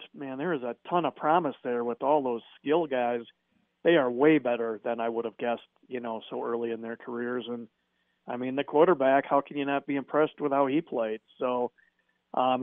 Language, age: English, 40-59